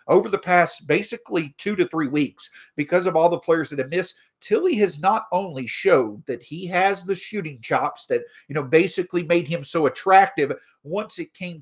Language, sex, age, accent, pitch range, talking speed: English, male, 50-69, American, 150-200 Hz, 195 wpm